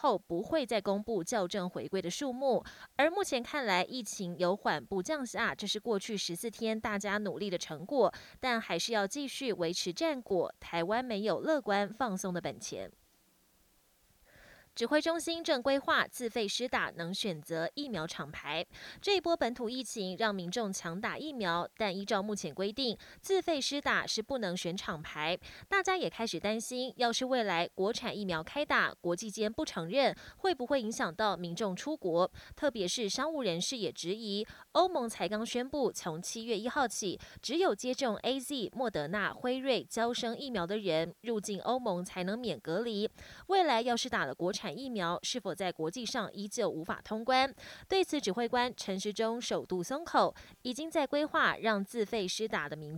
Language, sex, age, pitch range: Chinese, female, 20-39, 185-255 Hz